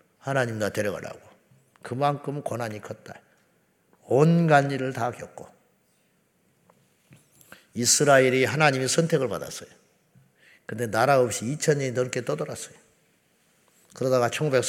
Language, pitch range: Korean, 115-145 Hz